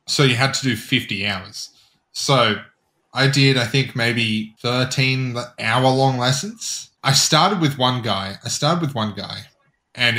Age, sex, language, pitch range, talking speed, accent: 20-39, male, English, 110-140 Hz, 165 wpm, Australian